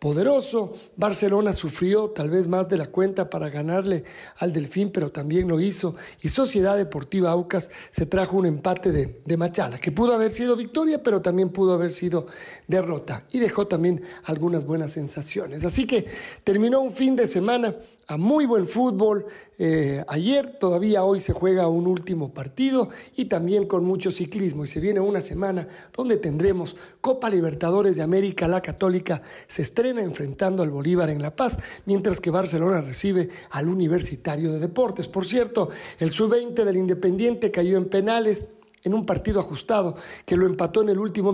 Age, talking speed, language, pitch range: 50-69, 170 wpm, Spanish, 170-210 Hz